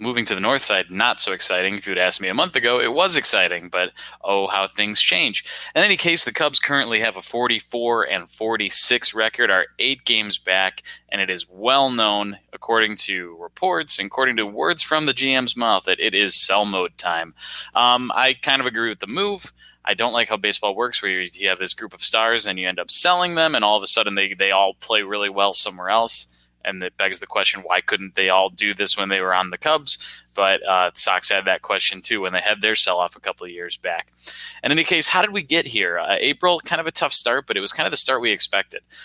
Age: 20-39